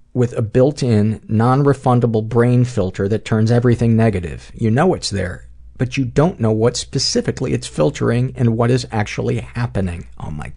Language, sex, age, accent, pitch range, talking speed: English, male, 50-69, American, 95-125 Hz, 165 wpm